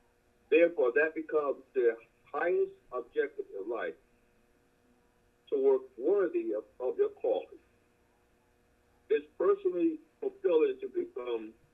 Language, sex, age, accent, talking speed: English, male, 60-79, American, 100 wpm